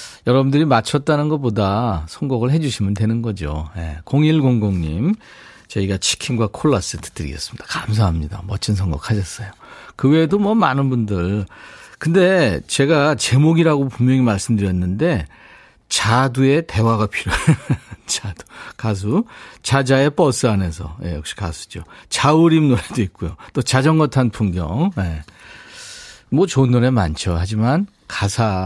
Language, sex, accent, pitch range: Korean, male, native, 100-140 Hz